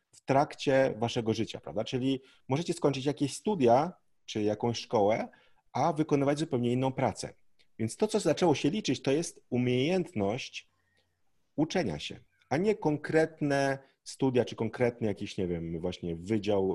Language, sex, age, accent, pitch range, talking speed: Polish, male, 30-49, native, 100-140 Hz, 145 wpm